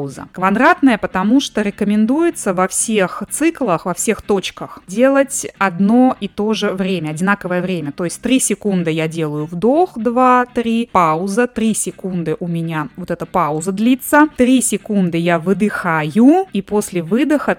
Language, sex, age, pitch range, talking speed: Russian, female, 20-39, 175-240 Hz, 145 wpm